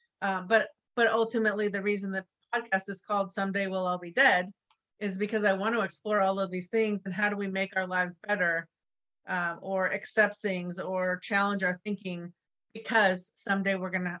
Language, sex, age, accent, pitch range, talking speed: English, female, 40-59, American, 185-220 Hz, 195 wpm